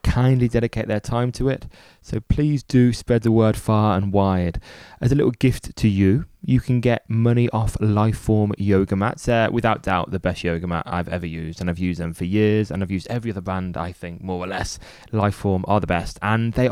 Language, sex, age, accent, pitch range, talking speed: English, male, 20-39, British, 95-125 Hz, 225 wpm